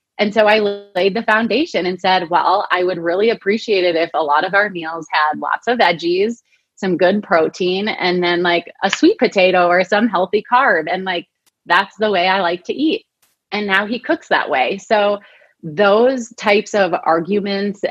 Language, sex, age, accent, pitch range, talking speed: English, female, 30-49, American, 170-210 Hz, 190 wpm